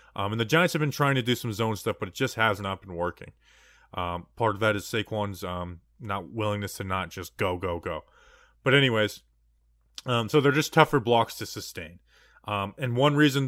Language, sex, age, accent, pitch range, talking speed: English, male, 20-39, American, 110-140 Hz, 215 wpm